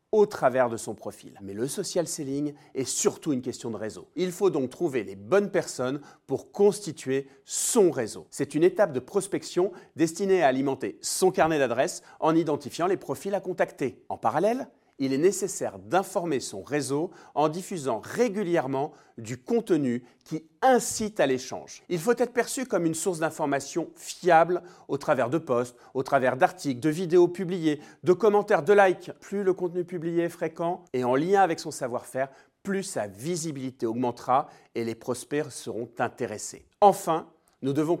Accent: French